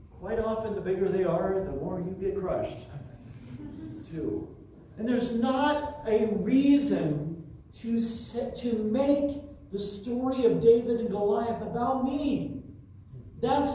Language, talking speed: English, 125 wpm